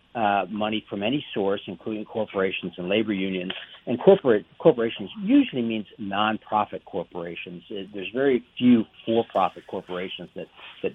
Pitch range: 100-140 Hz